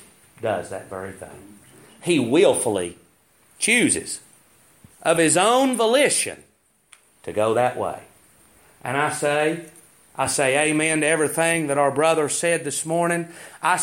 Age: 40-59